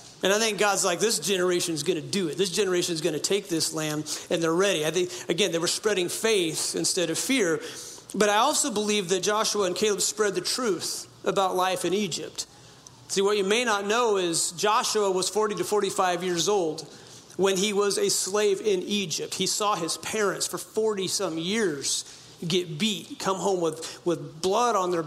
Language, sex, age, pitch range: English, male, 40-59, 175-220 Hz